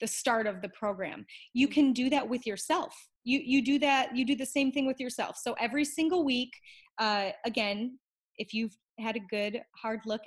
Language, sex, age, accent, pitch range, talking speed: English, female, 30-49, American, 225-290 Hz, 205 wpm